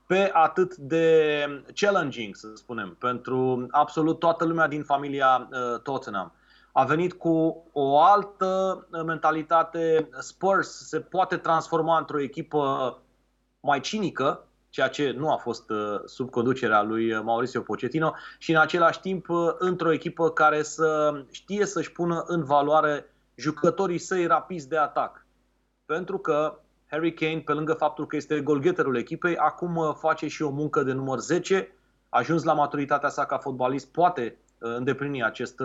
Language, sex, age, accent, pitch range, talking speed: Romanian, male, 30-49, native, 130-170 Hz, 140 wpm